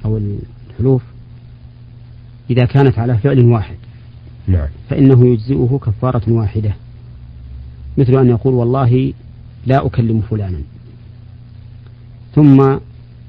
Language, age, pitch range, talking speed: Arabic, 40-59, 115-125 Hz, 85 wpm